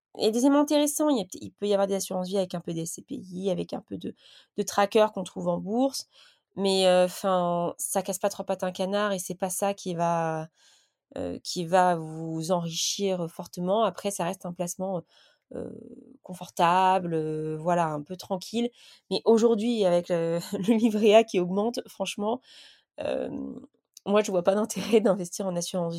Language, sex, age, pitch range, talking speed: French, female, 20-39, 175-205 Hz, 180 wpm